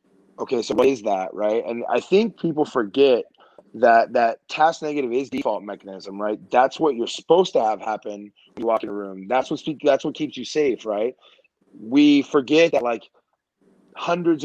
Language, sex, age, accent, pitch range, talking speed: English, male, 30-49, American, 115-150 Hz, 185 wpm